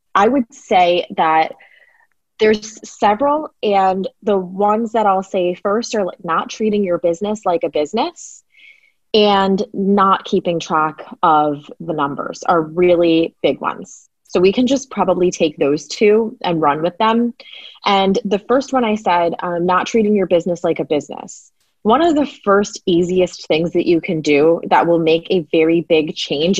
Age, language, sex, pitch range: 20-39, English, female, 165-215 Hz